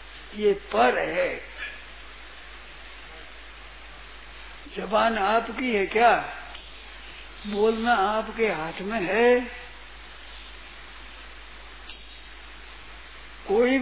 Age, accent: 50-69, native